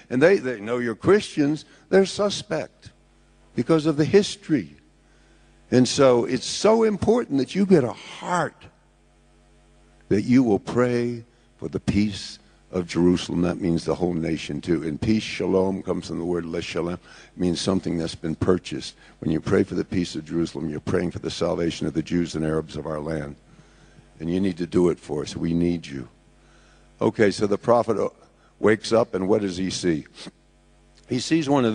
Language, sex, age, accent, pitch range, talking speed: English, male, 60-79, American, 85-135 Hz, 185 wpm